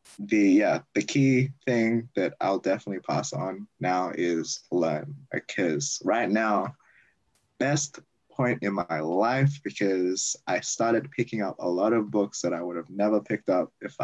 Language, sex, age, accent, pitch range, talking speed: English, male, 20-39, American, 100-130 Hz, 165 wpm